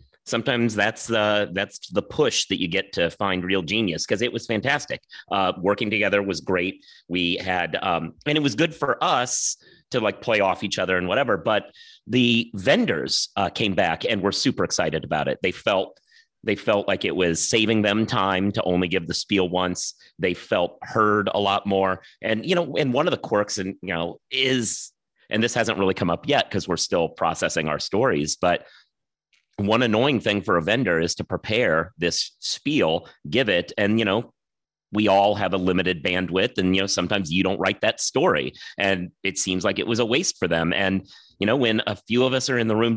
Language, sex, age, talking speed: English, male, 30-49, 210 wpm